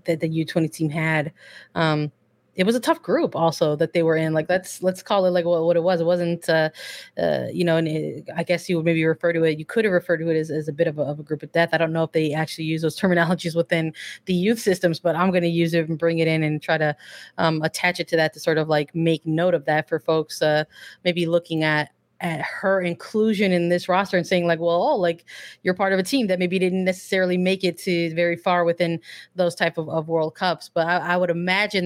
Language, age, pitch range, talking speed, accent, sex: English, 20-39, 160-185 Hz, 265 wpm, American, female